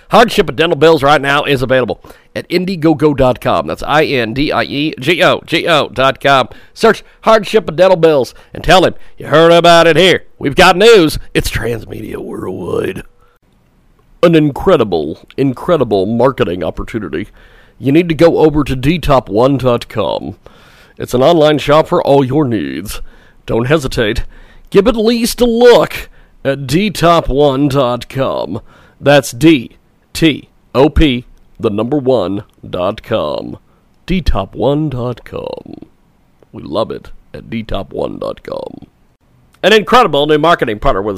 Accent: American